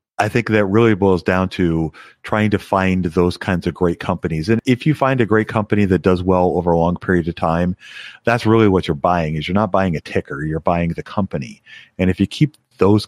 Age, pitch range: 30-49, 90-105 Hz